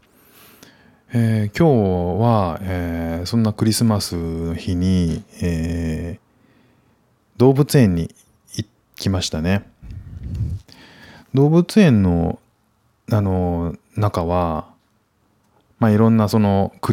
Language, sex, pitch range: Japanese, male, 85-110 Hz